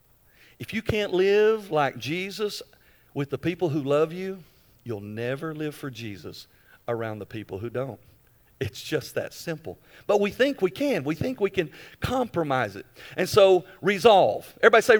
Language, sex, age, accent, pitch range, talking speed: English, male, 50-69, American, 130-175 Hz, 170 wpm